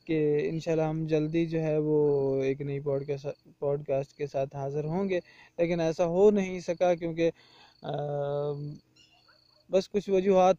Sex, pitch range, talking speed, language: male, 165-190 Hz, 130 wpm, Urdu